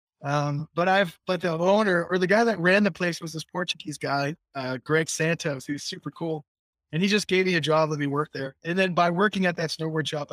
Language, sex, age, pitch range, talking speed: English, male, 20-39, 140-165 Hz, 245 wpm